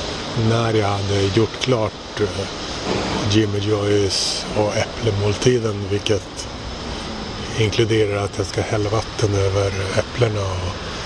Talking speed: 105 wpm